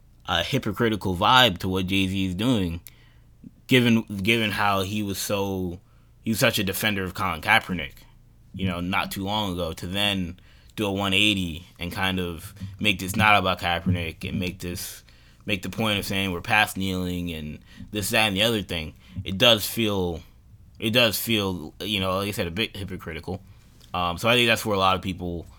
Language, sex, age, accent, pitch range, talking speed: English, male, 20-39, American, 85-100 Hz, 200 wpm